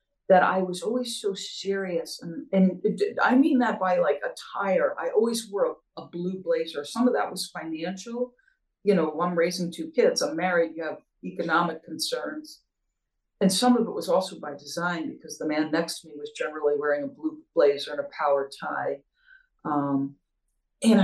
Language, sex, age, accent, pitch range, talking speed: English, female, 50-69, American, 165-245 Hz, 185 wpm